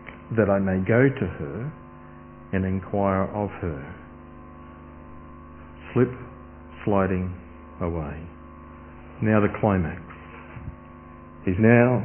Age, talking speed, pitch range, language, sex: 50-69, 90 wpm, 80-120 Hz, English, male